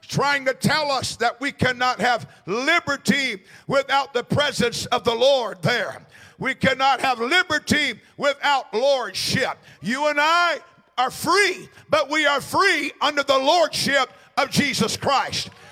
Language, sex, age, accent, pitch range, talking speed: English, male, 50-69, American, 255-295 Hz, 140 wpm